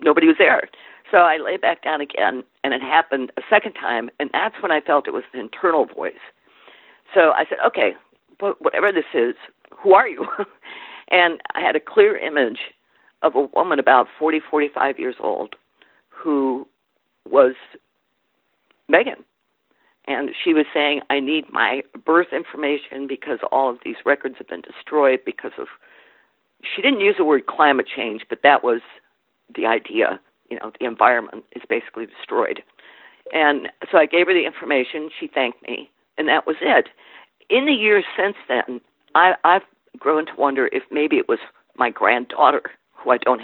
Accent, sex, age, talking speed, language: American, female, 50-69, 170 wpm, English